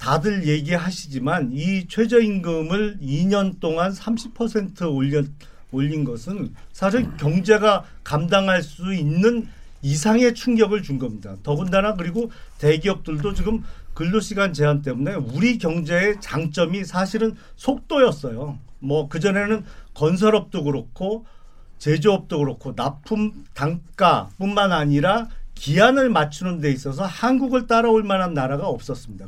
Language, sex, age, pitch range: Korean, male, 40-59, 145-210 Hz